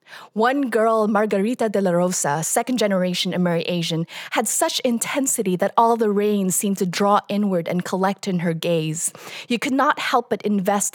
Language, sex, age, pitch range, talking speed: English, female, 20-39, 180-210 Hz, 175 wpm